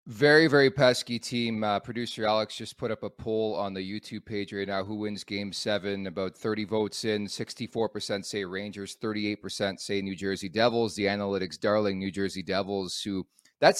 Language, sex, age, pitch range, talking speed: English, male, 30-49, 100-120 Hz, 185 wpm